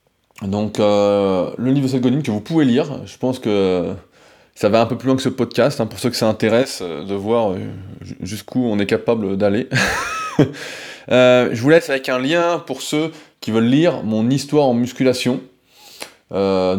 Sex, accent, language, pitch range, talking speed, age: male, French, French, 110-135 Hz, 180 wpm, 20-39